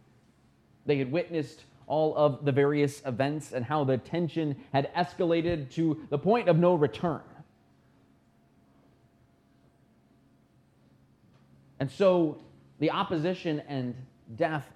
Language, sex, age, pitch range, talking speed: English, male, 20-39, 120-165 Hz, 105 wpm